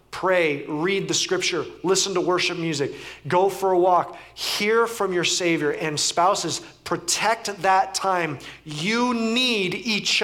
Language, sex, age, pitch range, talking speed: English, male, 30-49, 155-200 Hz, 140 wpm